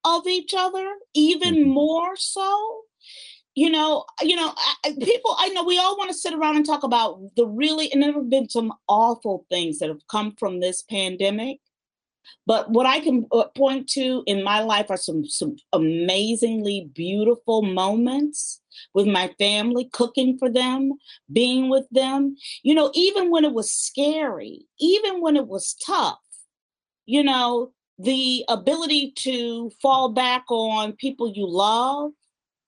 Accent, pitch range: American, 220-295 Hz